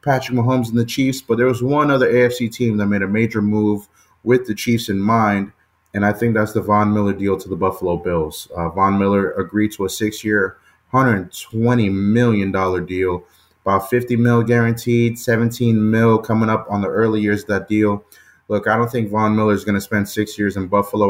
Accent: American